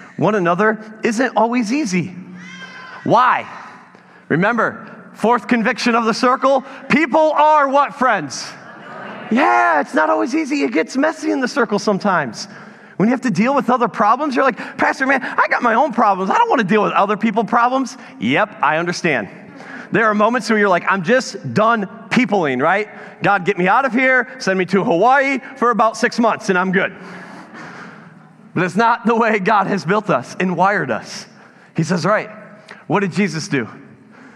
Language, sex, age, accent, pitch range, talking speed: English, male, 30-49, American, 160-235 Hz, 180 wpm